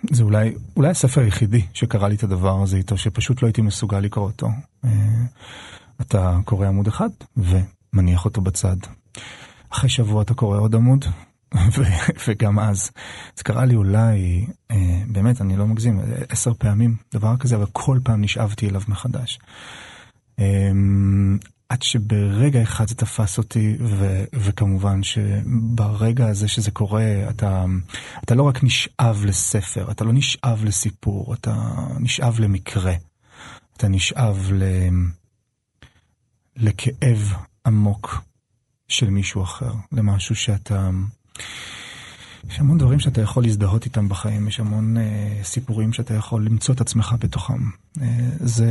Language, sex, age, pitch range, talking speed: Hebrew, male, 30-49, 100-120 Hz, 130 wpm